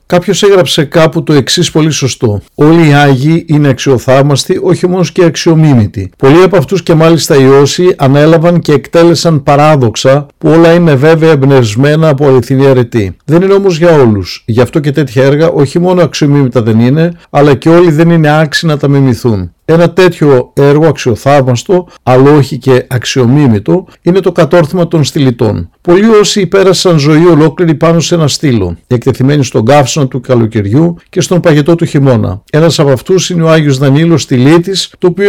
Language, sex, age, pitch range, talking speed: Greek, male, 50-69, 130-170 Hz, 170 wpm